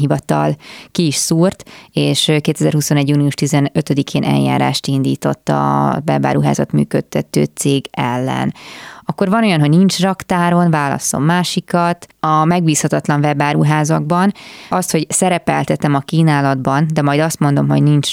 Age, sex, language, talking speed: 20-39, female, Hungarian, 120 wpm